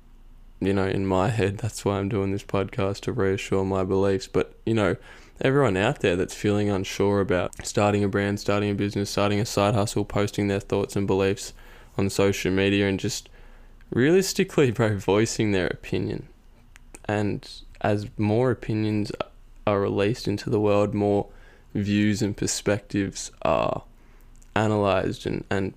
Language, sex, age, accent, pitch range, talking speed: English, male, 10-29, Australian, 100-115 Hz, 155 wpm